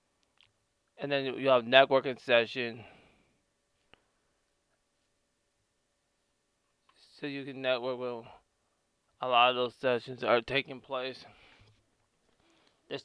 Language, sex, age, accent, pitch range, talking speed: English, male, 20-39, American, 120-140 Hz, 95 wpm